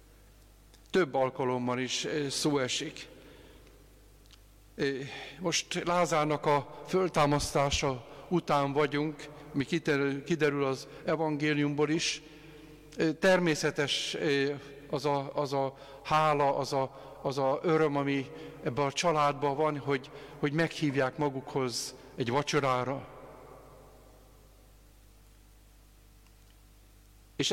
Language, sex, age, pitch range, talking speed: Hungarian, male, 50-69, 135-155 Hz, 80 wpm